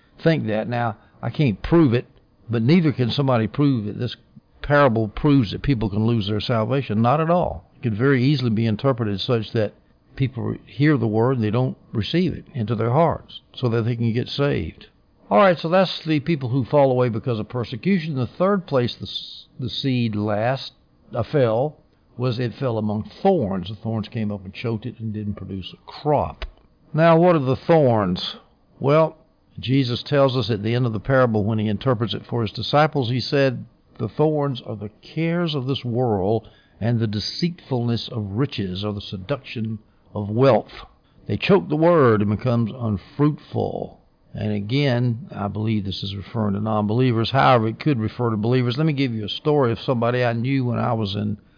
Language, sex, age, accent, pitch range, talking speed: English, male, 60-79, American, 110-140 Hz, 195 wpm